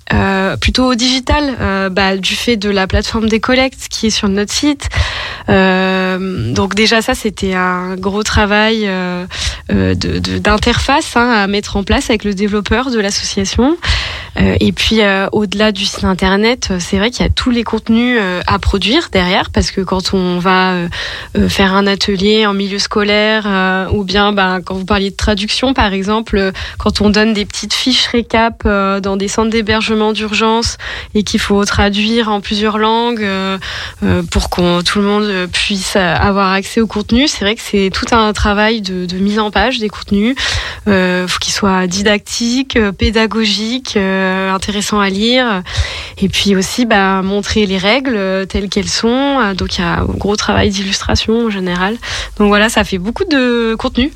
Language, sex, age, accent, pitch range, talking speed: French, female, 20-39, French, 190-225 Hz, 175 wpm